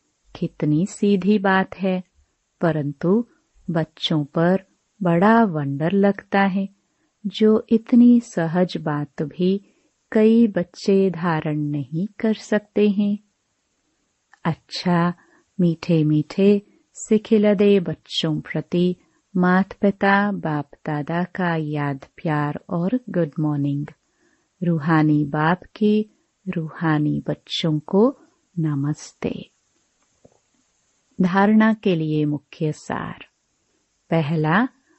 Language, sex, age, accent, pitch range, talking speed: Hindi, female, 30-49, native, 155-205 Hz, 90 wpm